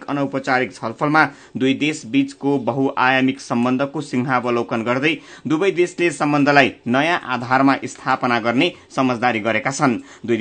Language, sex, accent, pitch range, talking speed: English, male, Indian, 130-165 Hz, 135 wpm